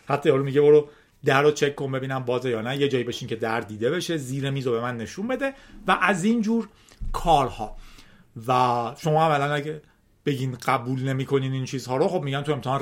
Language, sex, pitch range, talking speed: Persian, male, 115-160 Hz, 195 wpm